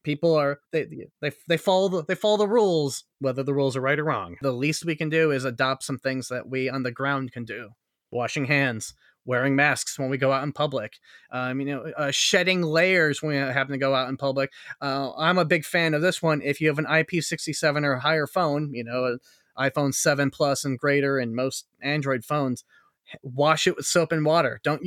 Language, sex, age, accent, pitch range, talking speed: English, male, 20-39, American, 130-155 Hz, 220 wpm